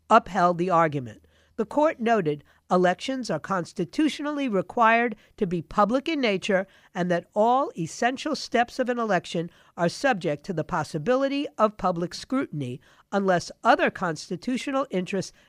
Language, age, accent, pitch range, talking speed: English, 50-69, American, 170-240 Hz, 135 wpm